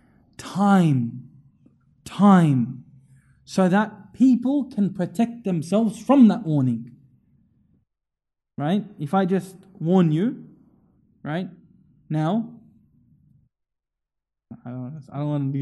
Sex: male